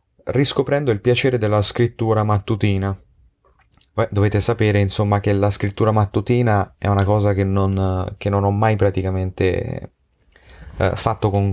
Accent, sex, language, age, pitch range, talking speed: native, male, Italian, 30-49, 90-100 Hz, 130 wpm